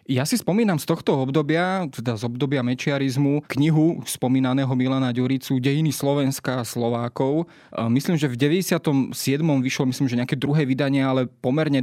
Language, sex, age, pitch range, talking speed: Slovak, male, 20-39, 125-150 Hz, 150 wpm